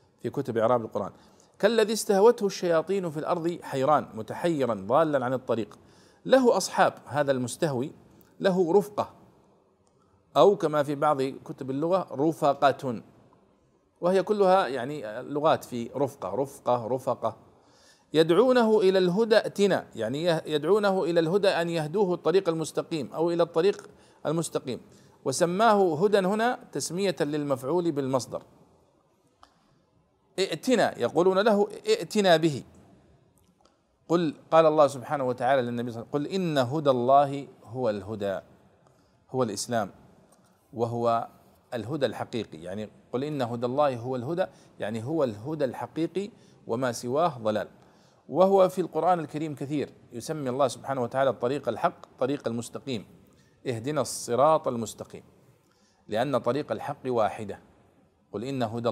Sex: male